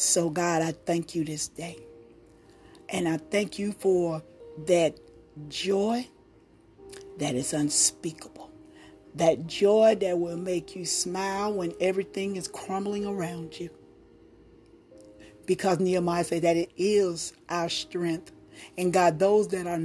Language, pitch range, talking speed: English, 170-200 Hz, 130 wpm